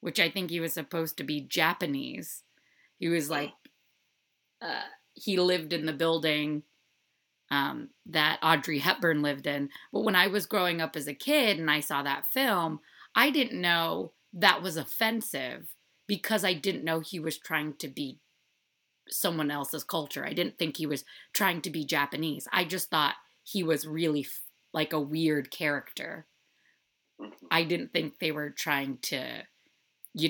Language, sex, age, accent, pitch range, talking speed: English, female, 30-49, American, 145-175 Hz, 165 wpm